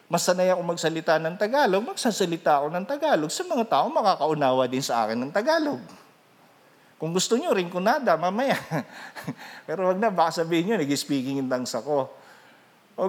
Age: 40-59